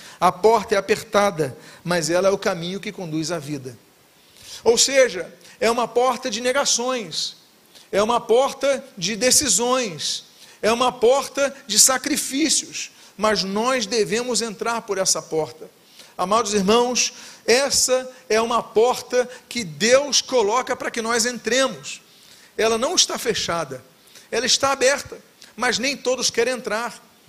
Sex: male